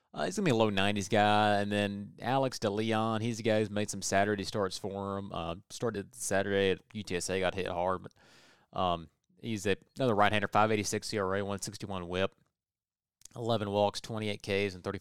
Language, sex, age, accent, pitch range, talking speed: English, male, 30-49, American, 95-110 Hz, 170 wpm